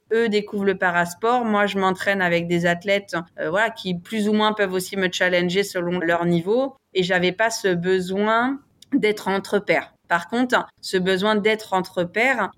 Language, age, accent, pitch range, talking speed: French, 30-49, French, 185-220 Hz, 180 wpm